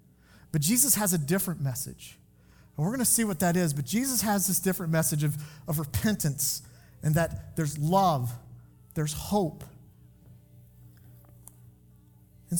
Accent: American